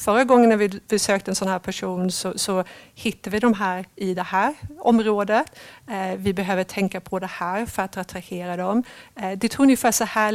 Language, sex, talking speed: Swedish, female, 195 wpm